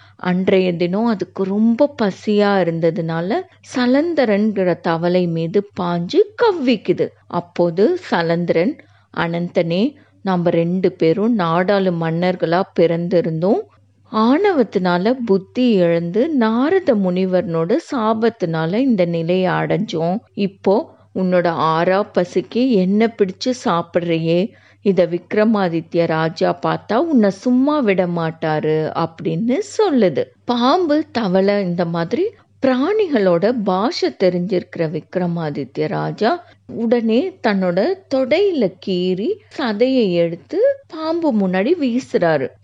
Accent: native